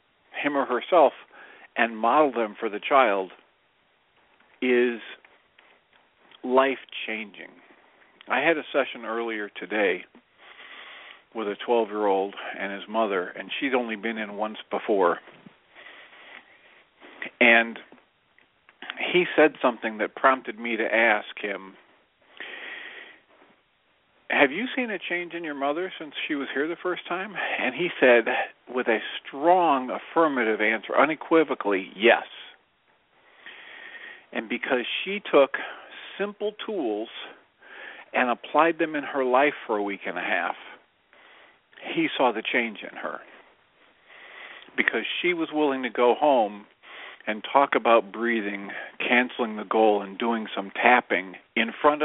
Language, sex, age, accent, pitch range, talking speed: English, male, 50-69, American, 110-165 Hz, 130 wpm